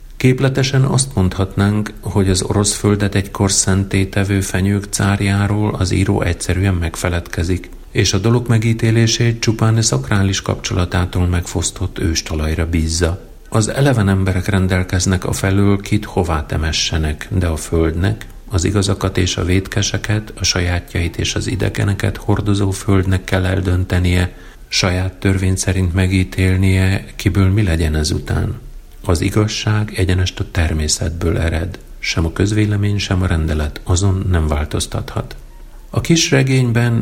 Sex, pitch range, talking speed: male, 90-105 Hz, 130 wpm